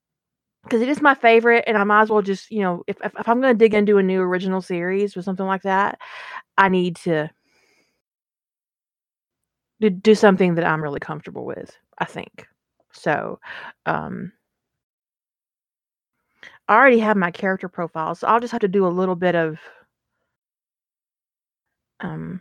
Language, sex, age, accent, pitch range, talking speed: English, female, 30-49, American, 170-210 Hz, 160 wpm